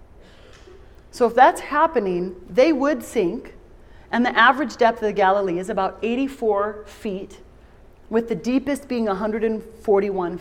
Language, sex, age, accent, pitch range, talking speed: English, female, 30-49, American, 190-235 Hz, 135 wpm